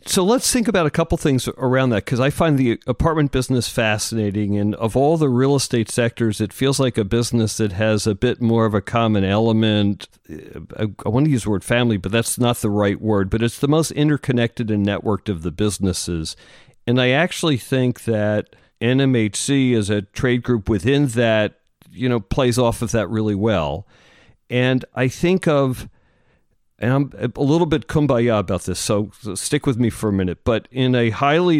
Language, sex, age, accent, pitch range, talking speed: English, male, 50-69, American, 105-130 Hz, 195 wpm